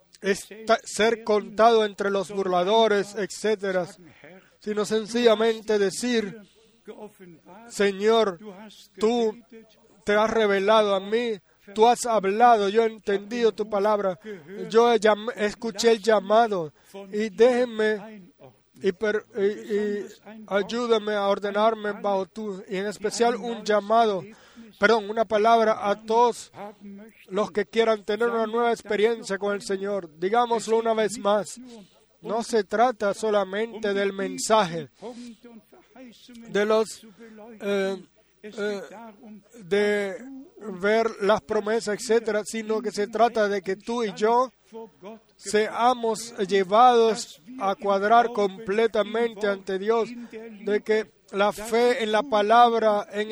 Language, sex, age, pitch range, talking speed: Spanish, male, 30-49, 200-225 Hz, 115 wpm